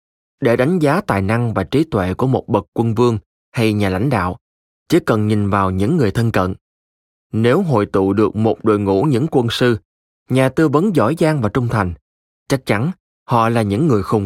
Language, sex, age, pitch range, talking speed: Vietnamese, male, 20-39, 95-130 Hz, 210 wpm